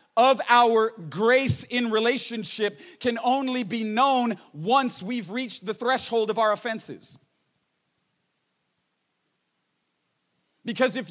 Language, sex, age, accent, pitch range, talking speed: English, male, 40-59, American, 205-250 Hz, 105 wpm